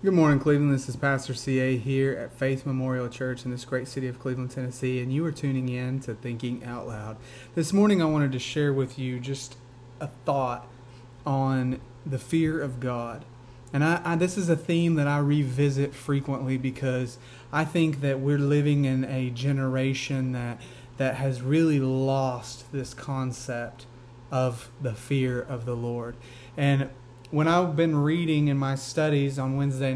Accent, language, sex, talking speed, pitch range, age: American, English, male, 170 wpm, 125-150 Hz, 30-49